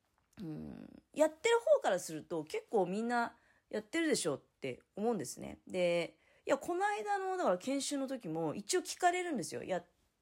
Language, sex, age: Japanese, female, 30-49